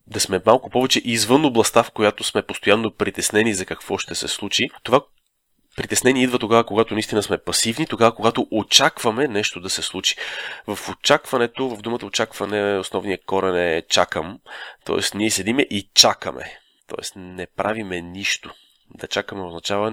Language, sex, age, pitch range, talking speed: Bulgarian, male, 30-49, 100-125 Hz, 155 wpm